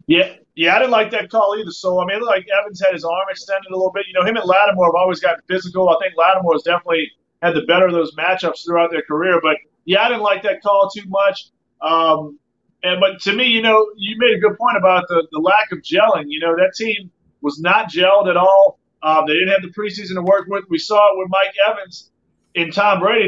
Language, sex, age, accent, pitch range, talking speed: English, male, 30-49, American, 180-220 Hz, 255 wpm